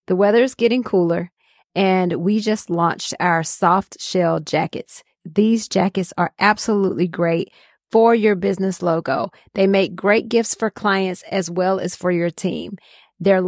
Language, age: English, 30-49